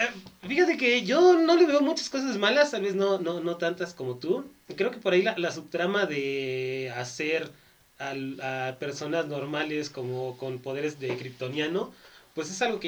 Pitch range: 125-170 Hz